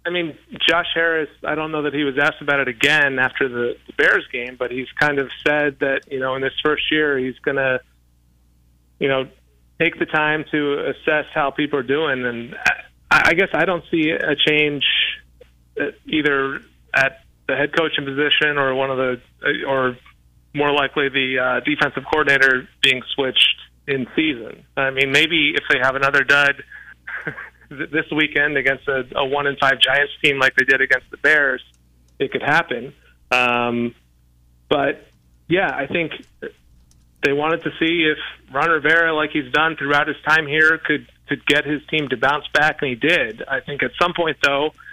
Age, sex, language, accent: 30-49, male, English, American